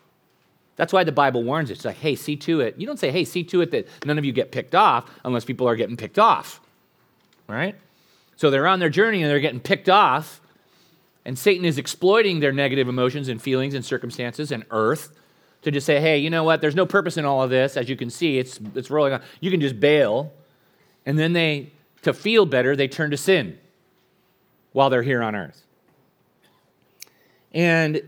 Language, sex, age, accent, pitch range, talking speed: English, male, 30-49, American, 135-185 Hz, 210 wpm